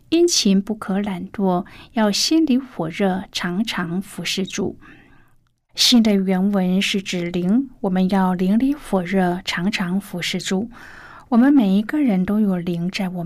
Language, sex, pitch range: Chinese, female, 180-220 Hz